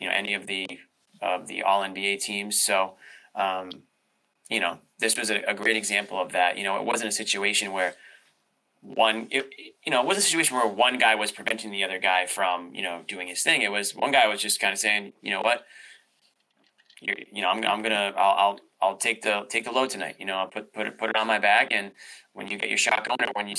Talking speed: 255 wpm